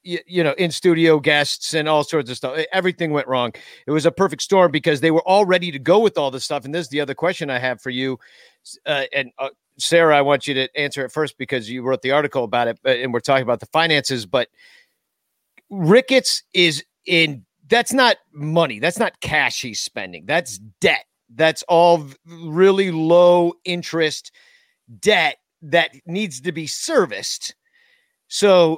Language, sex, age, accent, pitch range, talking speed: English, male, 40-59, American, 150-195 Hz, 180 wpm